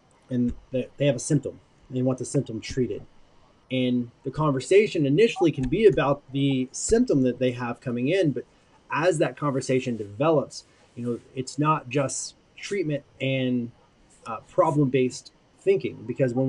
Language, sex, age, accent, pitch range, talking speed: English, male, 30-49, American, 125-150 Hz, 155 wpm